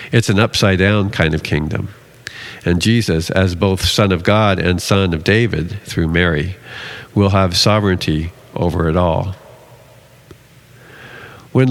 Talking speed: 140 wpm